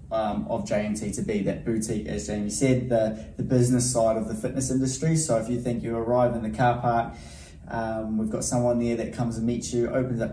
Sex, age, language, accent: male, 20-39, English, Australian